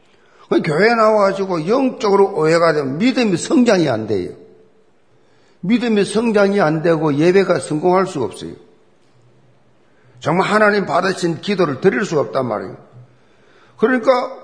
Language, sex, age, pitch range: Korean, male, 50-69, 145-215 Hz